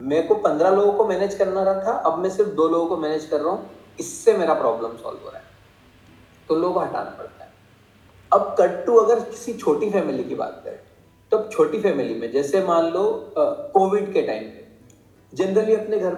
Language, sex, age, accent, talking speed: Hindi, male, 30-49, native, 90 wpm